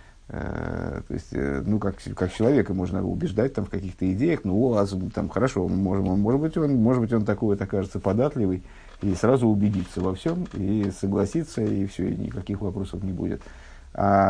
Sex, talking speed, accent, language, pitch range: male, 180 wpm, native, Russian, 95-115 Hz